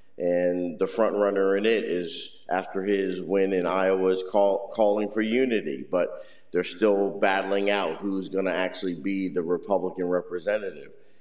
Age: 50-69